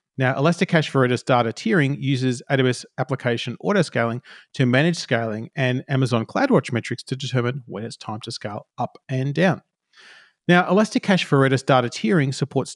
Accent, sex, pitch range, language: Australian, male, 120-145 Hz, English